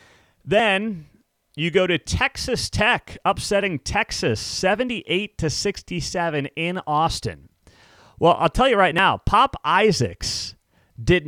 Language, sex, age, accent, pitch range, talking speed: English, male, 30-49, American, 130-180 Hz, 115 wpm